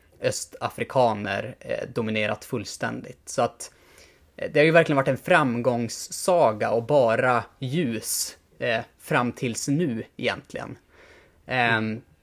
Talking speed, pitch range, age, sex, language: 110 wpm, 110-125 Hz, 20-39, male, Swedish